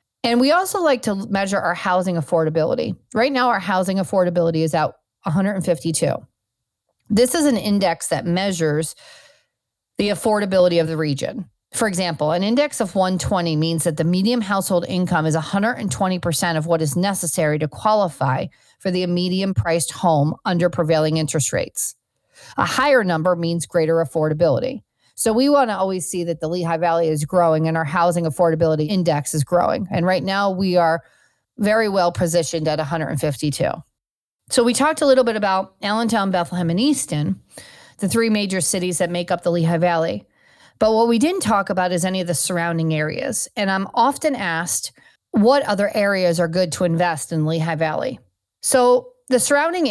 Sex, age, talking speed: female, 40-59, 170 wpm